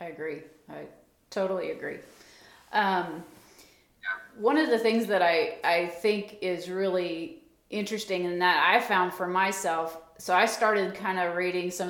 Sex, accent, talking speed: female, American, 150 wpm